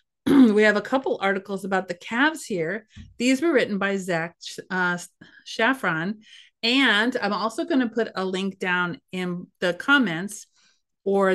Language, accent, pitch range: English, American, 180-220 Hz